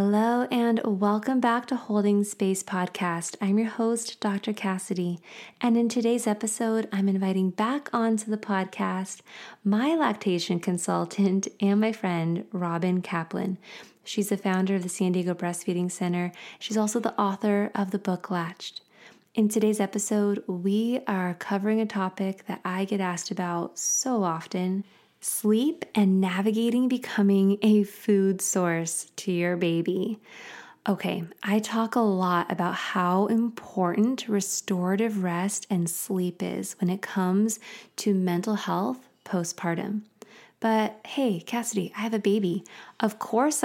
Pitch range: 185-225 Hz